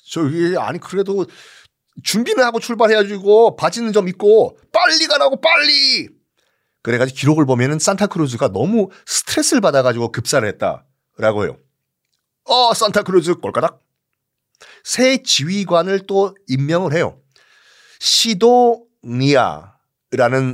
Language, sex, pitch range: Korean, male, 140-230 Hz